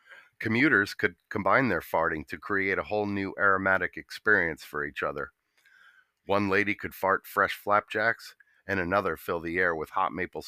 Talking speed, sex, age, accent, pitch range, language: 165 wpm, male, 50-69, American, 90-105 Hz, English